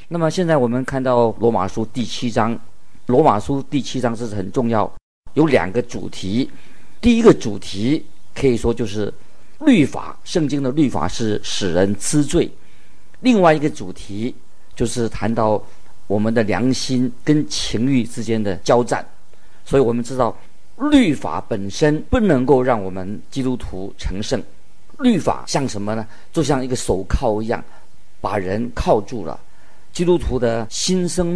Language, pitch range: Chinese, 105-130 Hz